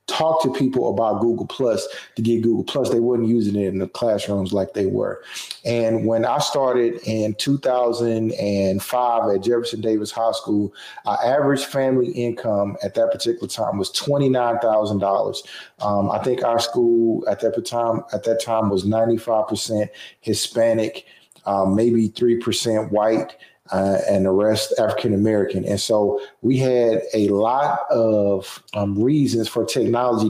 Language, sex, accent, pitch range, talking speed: English, male, American, 110-130 Hz, 155 wpm